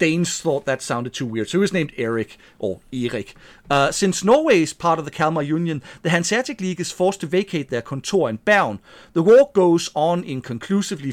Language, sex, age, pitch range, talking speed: English, male, 40-59, 140-190 Hz, 205 wpm